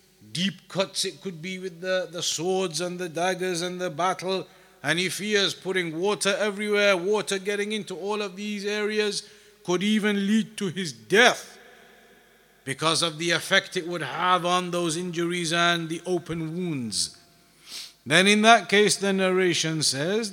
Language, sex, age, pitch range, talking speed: English, male, 50-69, 170-200 Hz, 165 wpm